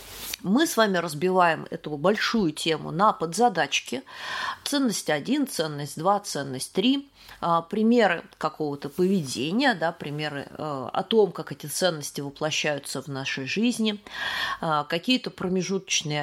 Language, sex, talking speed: Russian, female, 115 wpm